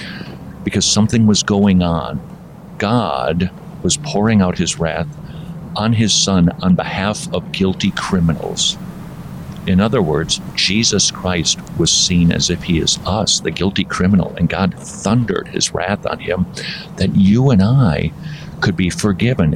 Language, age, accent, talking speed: English, 50-69, American, 145 wpm